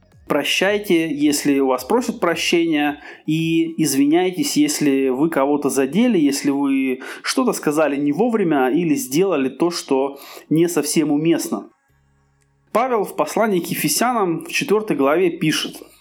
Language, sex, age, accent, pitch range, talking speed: Russian, male, 20-39, native, 145-230 Hz, 125 wpm